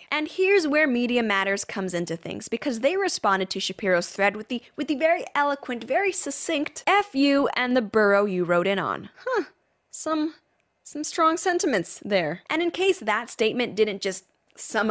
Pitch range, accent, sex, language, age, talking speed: 195-295 Hz, American, female, English, 10-29, 180 wpm